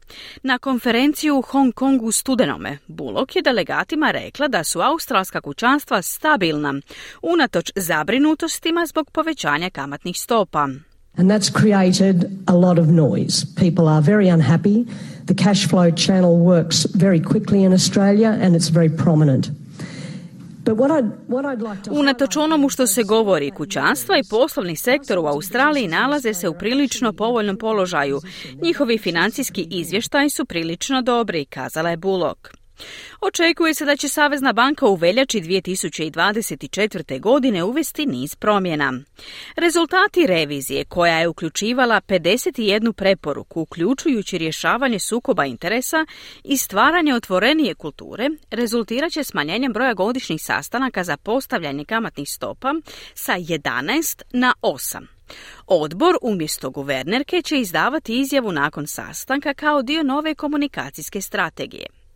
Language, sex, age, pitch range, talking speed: Croatian, female, 40-59, 170-270 Hz, 120 wpm